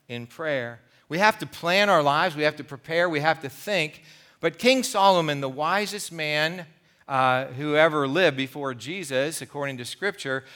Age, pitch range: 40-59, 140-190 Hz